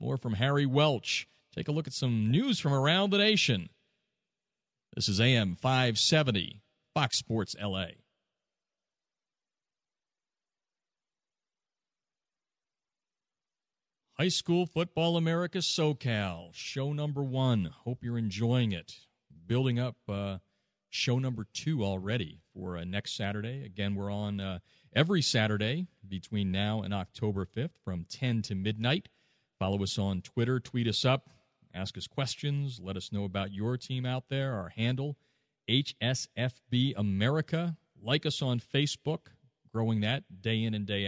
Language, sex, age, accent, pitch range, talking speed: English, male, 40-59, American, 100-145 Hz, 135 wpm